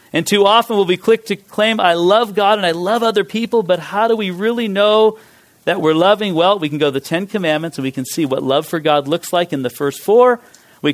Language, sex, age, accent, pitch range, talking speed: English, male, 40-59, American, 150-210 Hz, 265 wpm